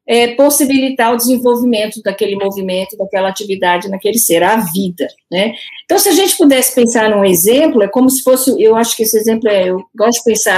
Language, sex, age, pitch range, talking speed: Portuguese, female, 50-69, 215-270 Hz, 195 wpm